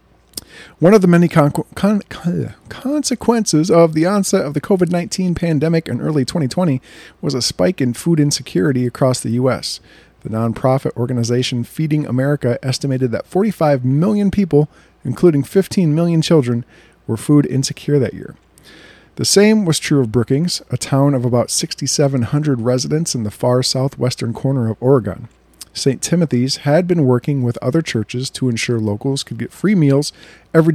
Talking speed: 160 wpm